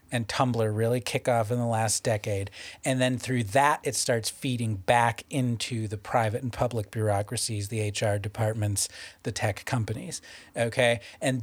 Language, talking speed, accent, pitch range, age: English, 165 wpm, American, 115-155 Hz, 40-59